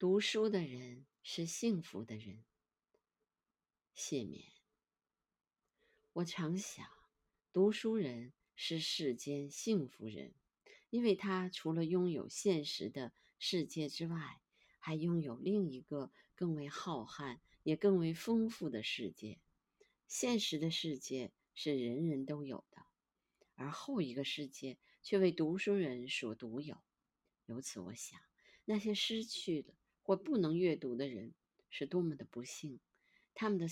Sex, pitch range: female, 135-190 Hz